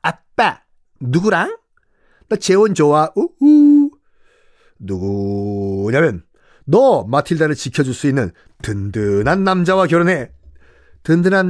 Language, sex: Korean, male